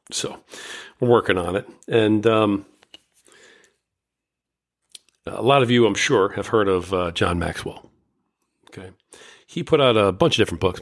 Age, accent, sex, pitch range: 40-59, American, male, 100-125 Hz